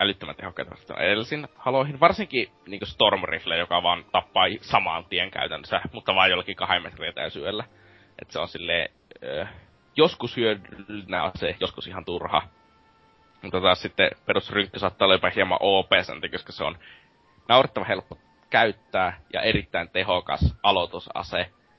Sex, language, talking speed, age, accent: male, Finnish, 135 wpm, 20-39, native